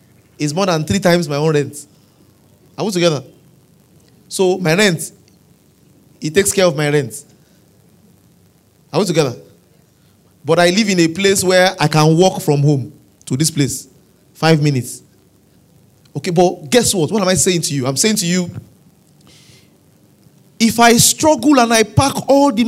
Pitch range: 140-195 Hz